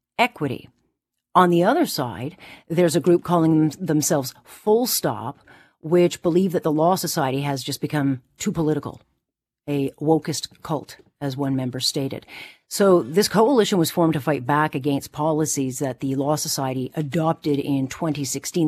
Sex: female